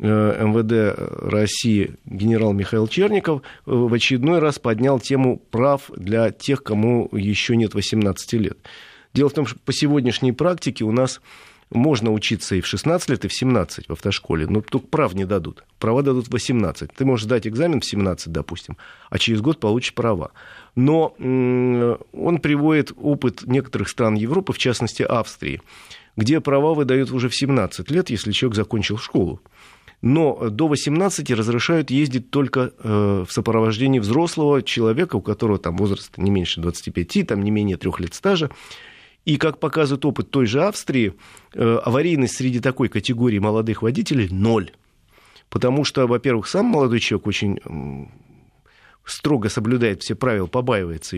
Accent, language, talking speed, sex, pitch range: native, Russian, 150 wpm, male, 105-135 Hz